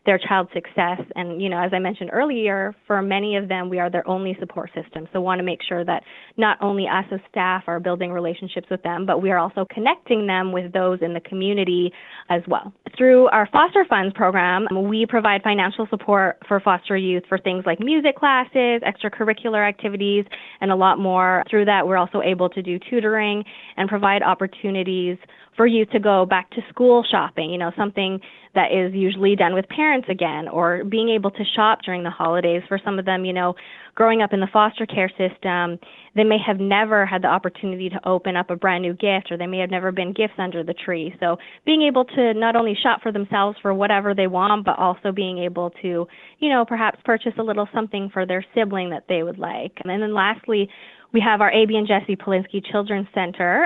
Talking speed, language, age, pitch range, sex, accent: 215 wpm, English, 20-39, 180-210 Hz, female, American